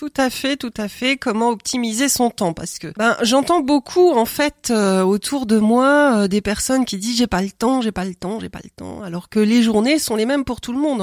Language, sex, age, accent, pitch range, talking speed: French, female, 40-59, French, 210-250 Hz, 270 wpm